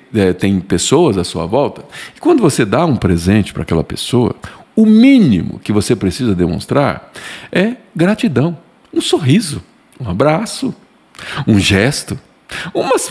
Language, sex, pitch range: Portuguese, male, 115-190 Hz